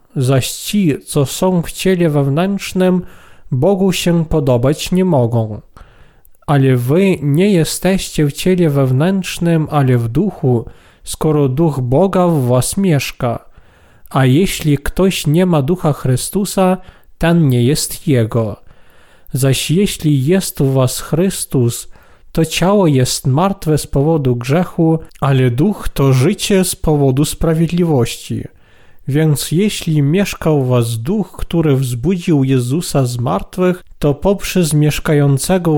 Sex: male